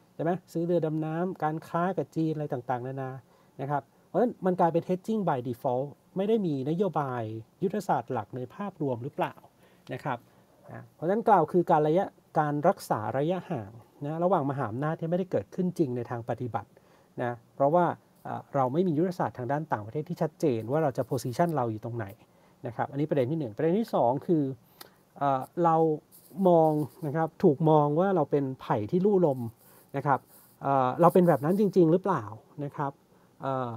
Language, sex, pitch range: Thai, male, 135-175 Hz